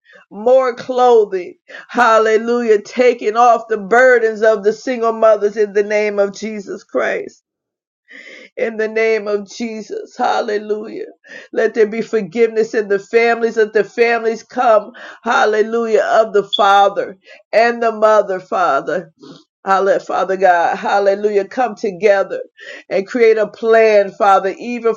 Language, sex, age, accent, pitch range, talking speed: English, female, 50-69, American, 210-245 Hz, 130 wpm